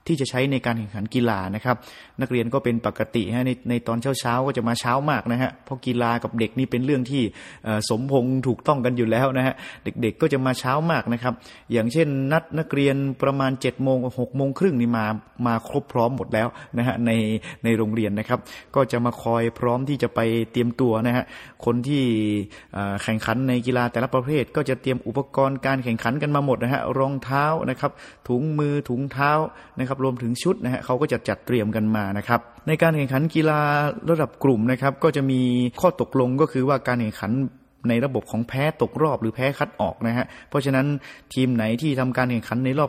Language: Thai